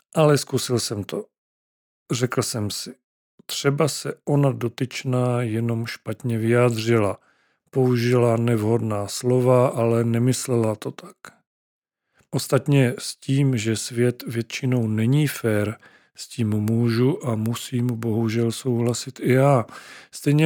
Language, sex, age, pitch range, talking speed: Czech, male, 40-59, 115-130 Hz, 115 wpm